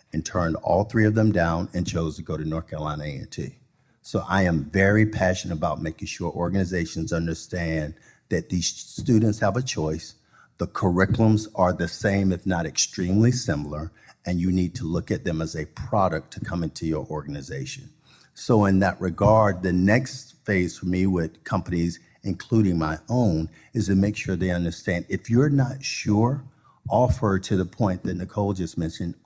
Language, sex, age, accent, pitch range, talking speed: English, male, 50-69, American, 85-110 Hz, 180 wpm